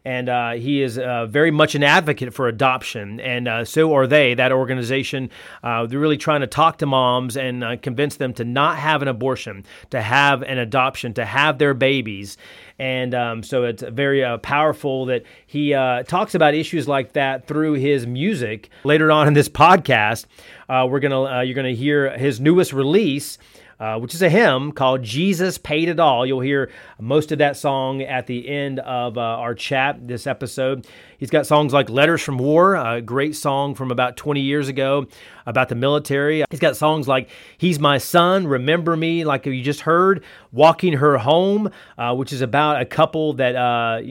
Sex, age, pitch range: male, 30-49, 125-150 Hz